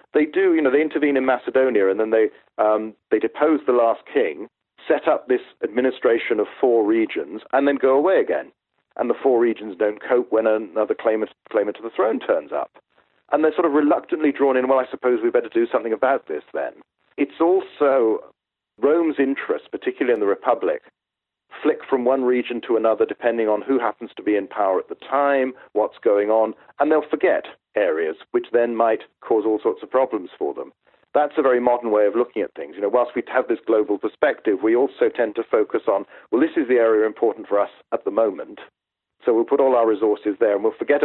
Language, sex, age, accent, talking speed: English, male, 40-59, British, 215 wpm